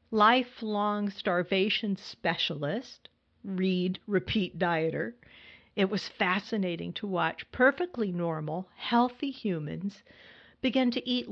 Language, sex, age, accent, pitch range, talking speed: English, female, 50-69, American, 185-245 Hz, 95 wpm